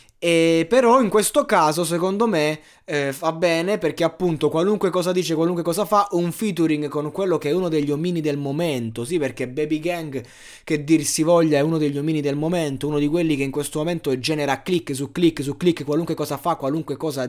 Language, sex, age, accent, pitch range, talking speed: Italian, male, 20-39, native, 140-175 Hz, 210 wpm